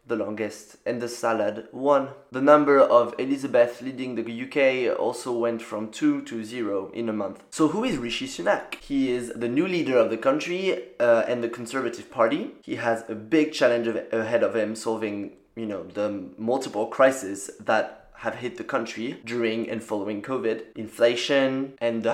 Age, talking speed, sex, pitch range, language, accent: 20-39, 180 wpm, male, 110-135 Hz, English, French